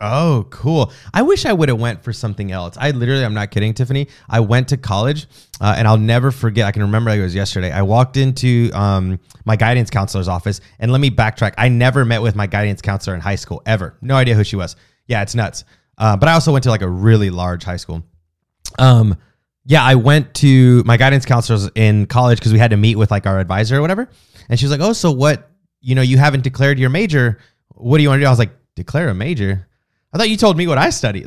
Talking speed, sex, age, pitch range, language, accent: 250 wpm, male, 20-39, 105-135 Hz, English, American